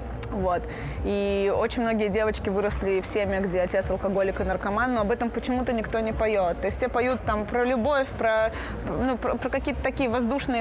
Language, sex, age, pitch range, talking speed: Russian, female, 20-39, 205-265 Hz, 180 wpm